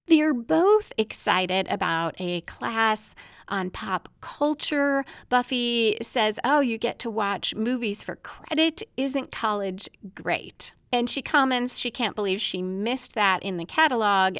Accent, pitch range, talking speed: American, 185-250 Hz, 140 wpm